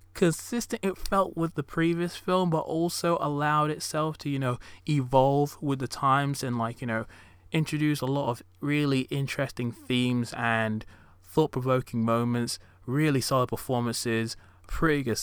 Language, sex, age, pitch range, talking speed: English, male, 20-39, 110-145 Hz, 145 wpm